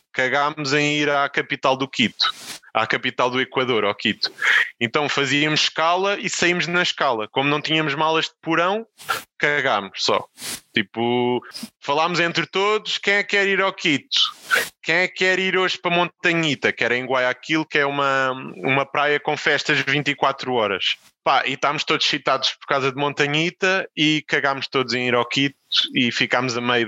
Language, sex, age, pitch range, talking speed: Portuguese, male, 20-39, 130-175 Hz, 175 wpm